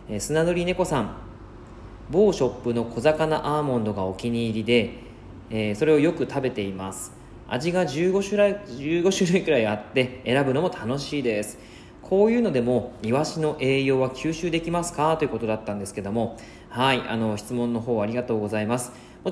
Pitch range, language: 110-155 Hz, Japanese